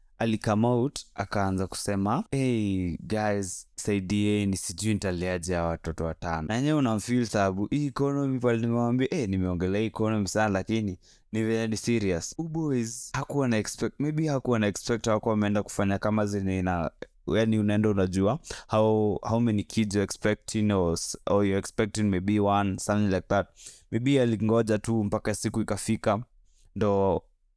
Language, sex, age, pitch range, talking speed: Swahili, male, 20-39, 100-115 Hz, 130 wpm